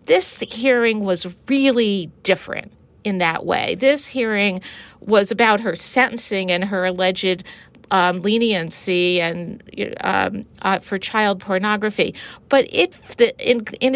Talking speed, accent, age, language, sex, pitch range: 130 wpm, American, 50-69, English, female, 195-245 Hz